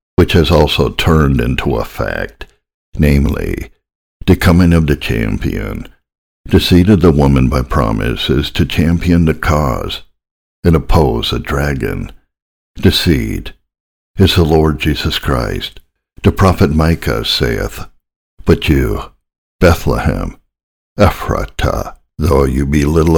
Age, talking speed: 60-79, 125 wpm